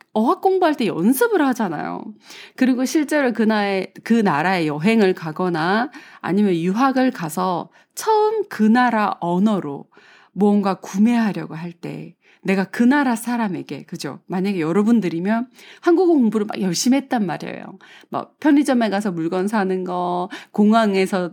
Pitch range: 185-275 Hz